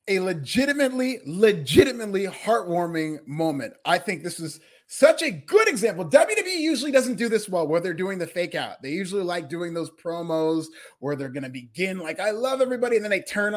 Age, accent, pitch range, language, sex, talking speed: 30-49, American, 175-235 Hz, English, male, 190 wpm